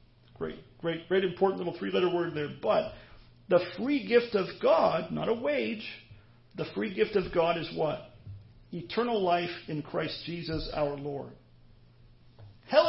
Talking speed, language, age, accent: 150 wpm, English, 40-59, American